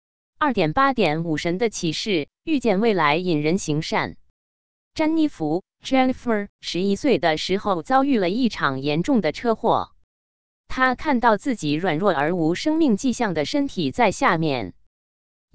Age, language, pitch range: 20-39, Chinese, 165-255 Hz